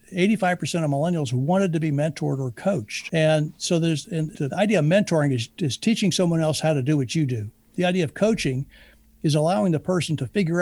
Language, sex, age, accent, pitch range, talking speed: English, male, 60-79, American, 140-170 Hz, 205 wpm